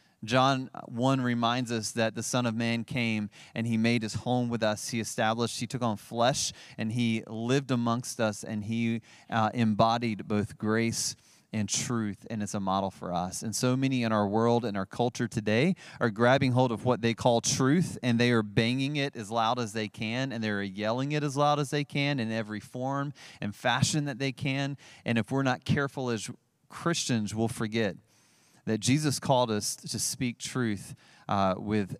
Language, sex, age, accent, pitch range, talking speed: English, male, 30-49, American, 105-125 Hz, 200 wpm